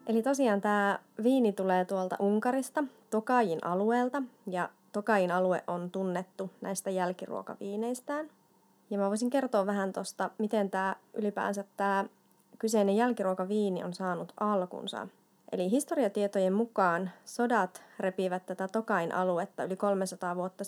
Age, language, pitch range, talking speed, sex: 30-49, Finnish, 185-230 Hz, 120 wpm, female